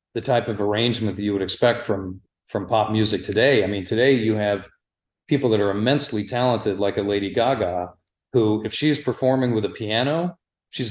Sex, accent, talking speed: male, American, 195 wpm